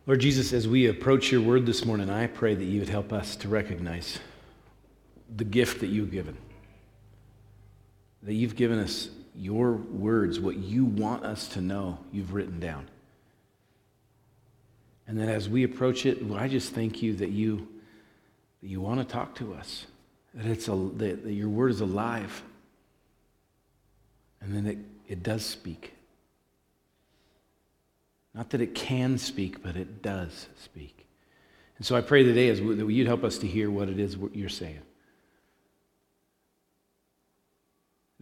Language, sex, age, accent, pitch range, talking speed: English, male, 50-69, American, 100-130 Hz, 155 wpm